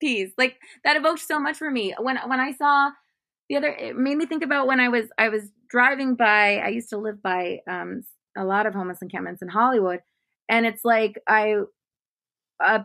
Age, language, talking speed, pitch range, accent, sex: 20-39, English, 200 wpm, 195-255 Hz, American, female